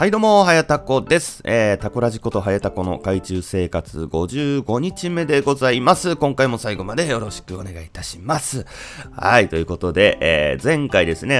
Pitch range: 80-110 Hz